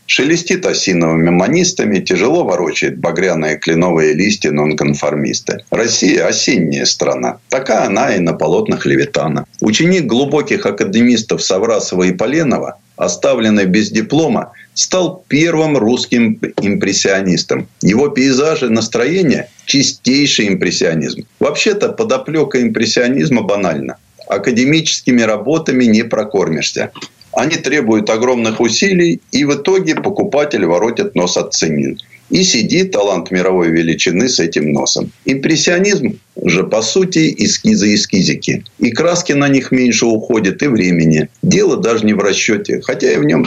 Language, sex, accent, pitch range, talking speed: Russian, male, native, 100-155 Hz, 120 wpm